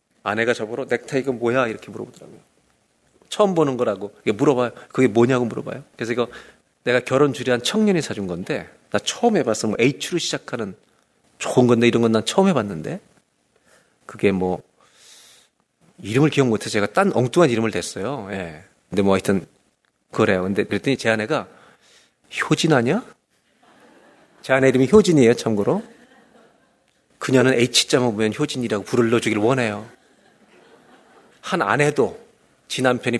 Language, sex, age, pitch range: Korean, male, 40-59, 110-145 Hz